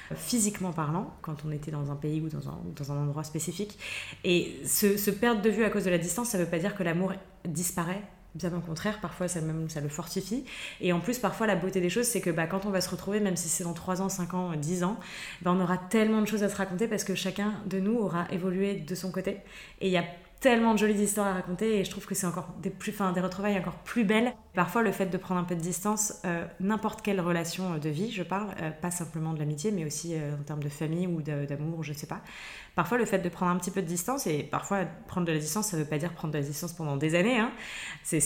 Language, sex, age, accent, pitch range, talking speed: English, female, 20-39, French, 165-195 Hz, 275 wpm